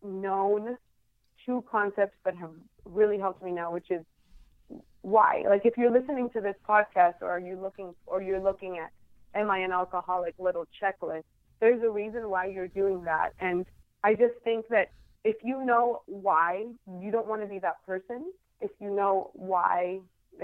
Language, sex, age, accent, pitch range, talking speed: English, female, 30-49, American, 180-215 Hz, 175 wpm